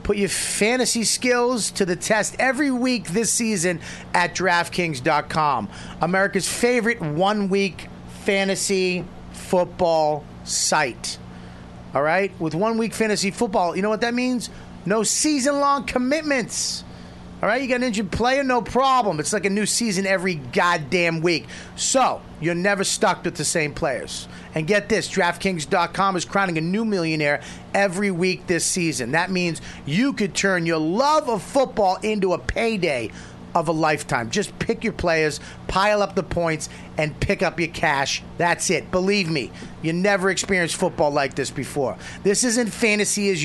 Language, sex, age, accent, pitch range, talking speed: English, male, 30-49, American, 160-210 Hz, 160 wpm